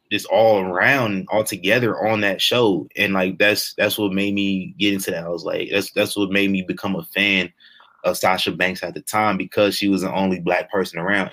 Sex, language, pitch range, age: male, English, 95-110 Hz, 20-39